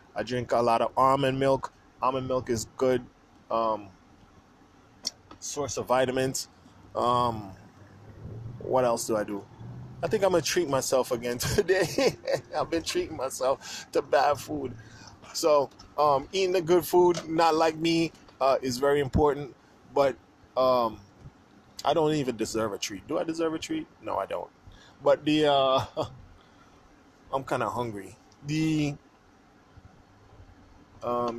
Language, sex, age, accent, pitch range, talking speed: English, male, 20-39, American, 110-150 Hz, 145 wpm